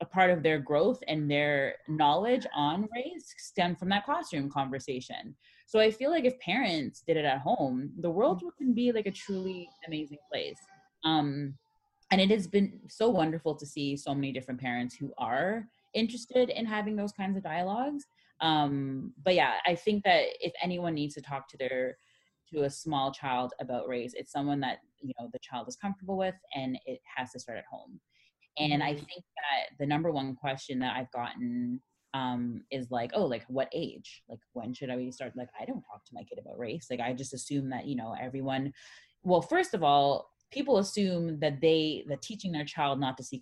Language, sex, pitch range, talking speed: English, female, 135-215 Hz, 205 wpm